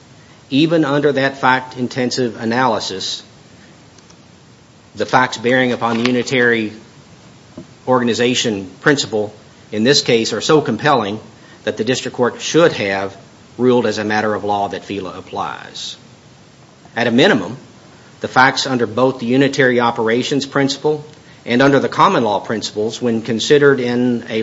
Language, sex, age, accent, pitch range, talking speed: English, male, 50-69, American, 110-135 Hz, 140 wpm